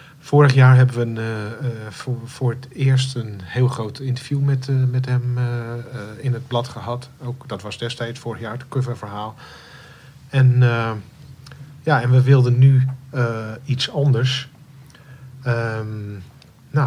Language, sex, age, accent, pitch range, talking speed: Dutch, male, 50-69, Dutch, 110-130 Hz, 155 wpm